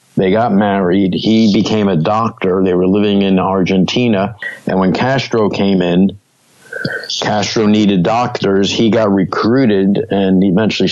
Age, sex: 50-69, male